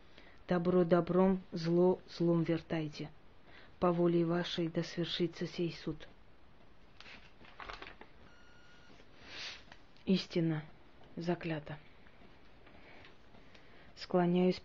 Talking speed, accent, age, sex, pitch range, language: 55 wpm, native, 30-49, female, 160-175 Hz, Russian